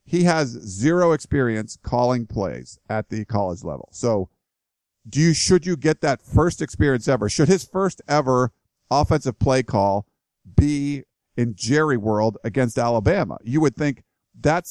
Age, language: 50-69, English